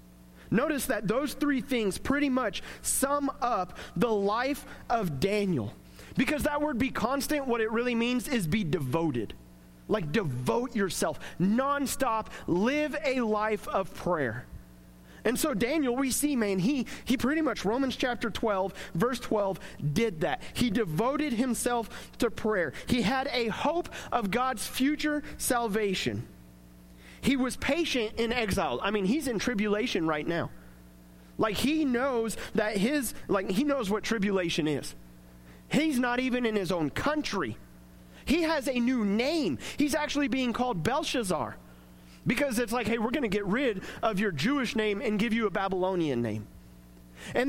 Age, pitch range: 30-49, 180-255 Hz